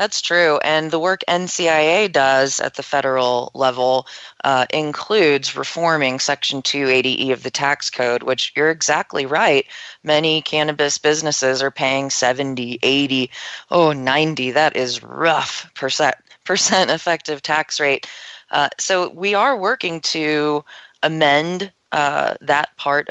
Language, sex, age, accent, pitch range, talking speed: English, female, 20-39, American, 130-150 Hz, 130 wpm